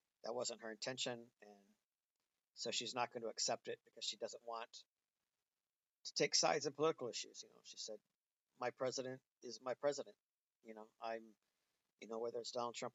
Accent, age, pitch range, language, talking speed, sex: American, 50-69, 115-130 Hz, English, 185 wpm, male